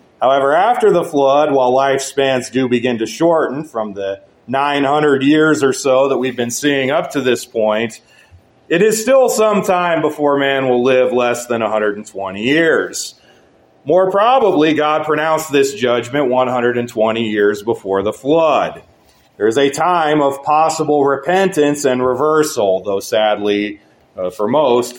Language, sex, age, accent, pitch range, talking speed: English, male, 30-49, American, 115-155 Hz, 150 wpm